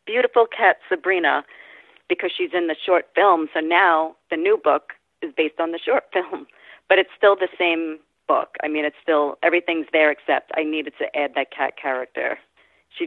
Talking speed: 190 wpm